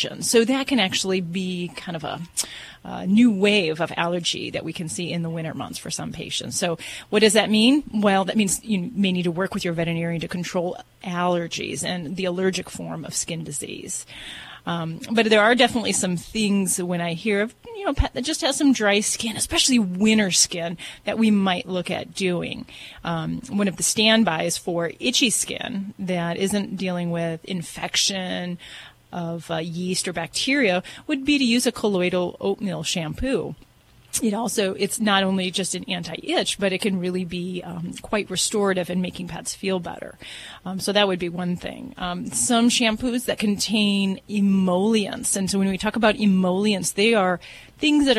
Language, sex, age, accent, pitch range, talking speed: English, female, 30-49, American, 180-210 Hz, 190 wpm